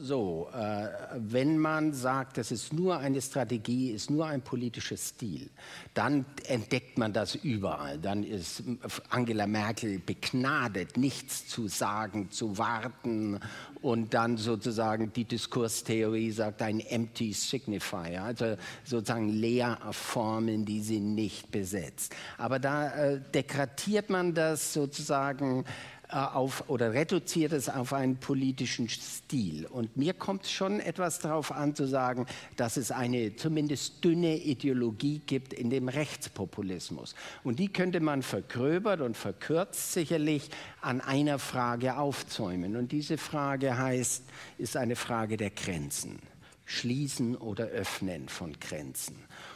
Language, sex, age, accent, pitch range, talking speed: German, male, 50-69, German, 115-145 Hz, 125 wpm